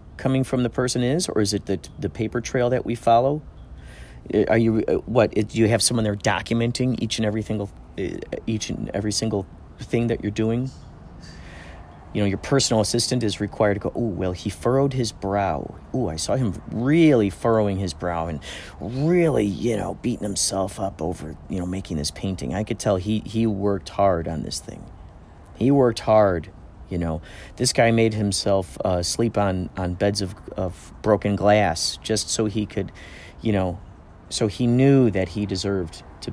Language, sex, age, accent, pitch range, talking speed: English, male, 40-59, American, 85-115 Hz, 185 wpm